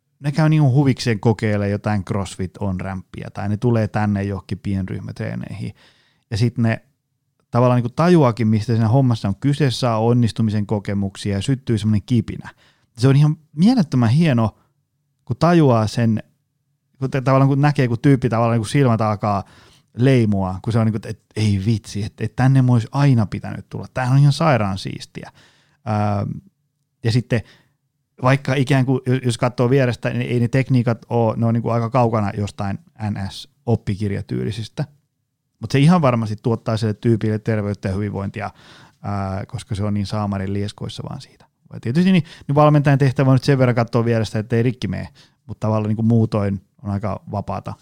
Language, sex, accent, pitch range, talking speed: Finnish, male, native, 105-140 Hz, 170 wpm